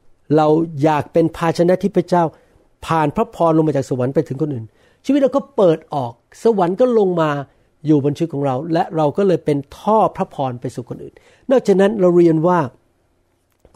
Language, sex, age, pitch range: Thai, male, 60-79, 125-165 Hz